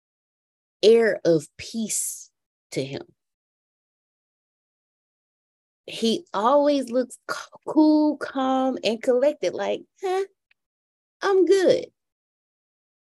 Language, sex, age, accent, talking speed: English, female, 30-49, American, 75 wpm